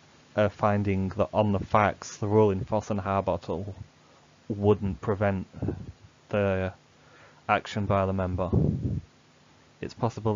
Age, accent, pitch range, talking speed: 20-39, British, 95-105 Hz, 115 wpm